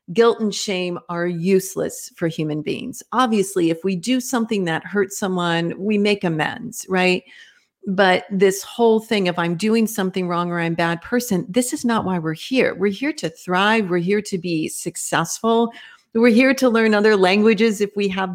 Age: 50-69